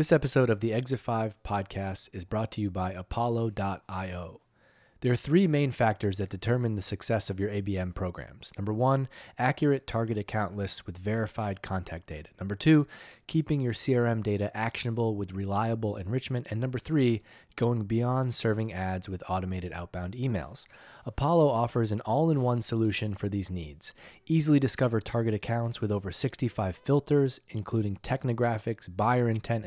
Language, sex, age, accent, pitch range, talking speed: English, male, 30-49, American, 100-125 Hz, 155 wpm